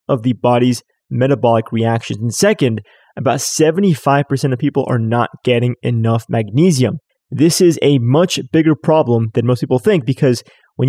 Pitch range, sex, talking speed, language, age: 120-155 Hz, male, 155 wpm, English, 20-39